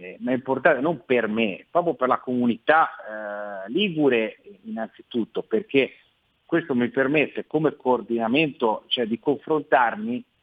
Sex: male